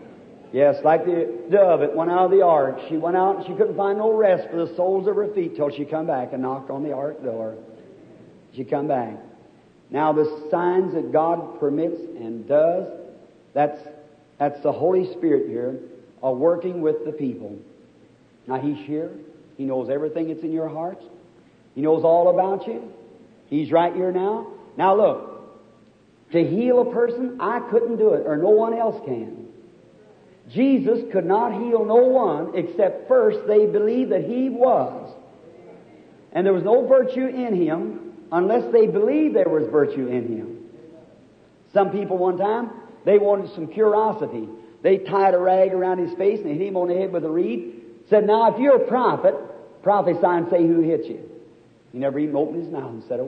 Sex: male